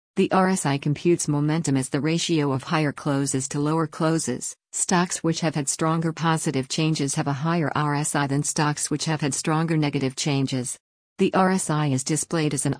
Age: 50-69